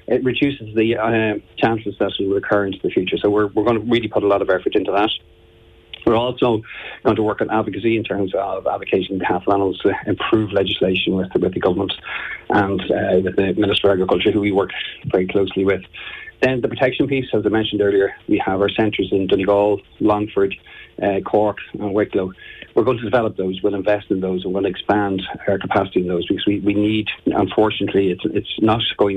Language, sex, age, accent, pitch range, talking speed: English, male, 40-59, Irish, 95-110 Hz, 210 wpm